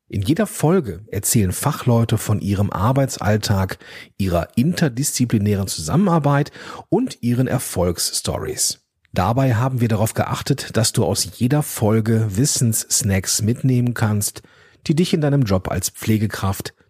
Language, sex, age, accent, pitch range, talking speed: German, male, 40-59, German, 100-135 Hz, 120 wpm